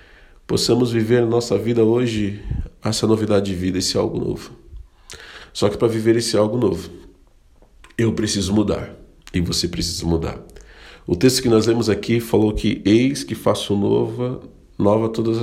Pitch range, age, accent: 105-135 Hz, 40-59, Brazilian